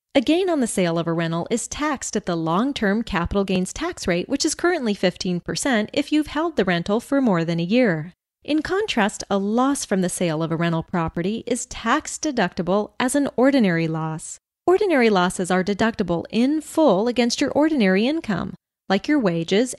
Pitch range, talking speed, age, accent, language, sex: 180-275 Hz, 190 wpm, 30-49, American, English, female